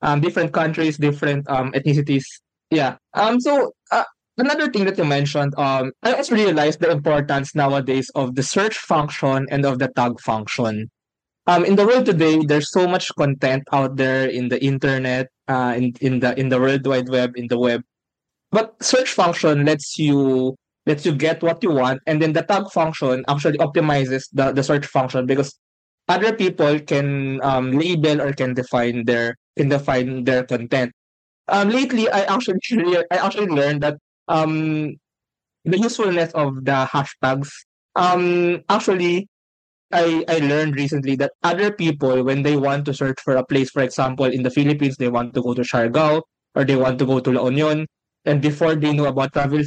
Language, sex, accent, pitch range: Filipino, male, native, 130-165 Hz